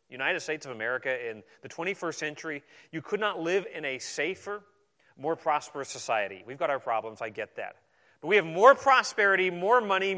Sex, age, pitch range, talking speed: male, 30-49, 135-195 Hz, 190 wpm